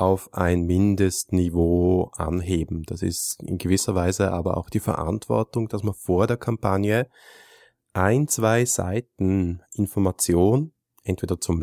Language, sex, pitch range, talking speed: German, male, 90-105 Hz, 125 wpm